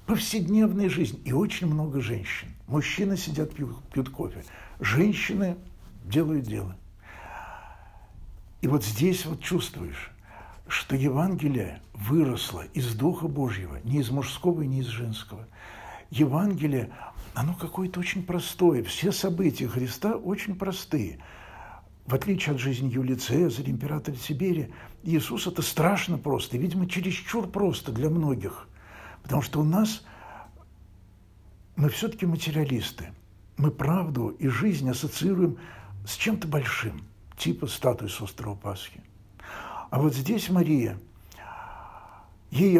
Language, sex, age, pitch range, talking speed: Russian, male, 60-79, 110-175 Hz, 115 wpm